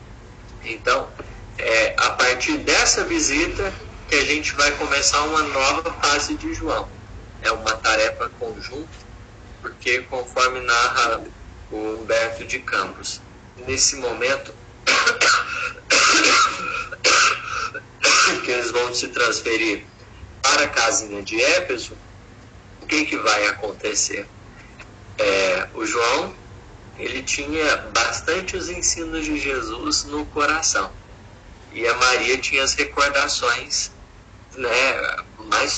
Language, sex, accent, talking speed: Portuguese, male, Brazilian, 105 wpm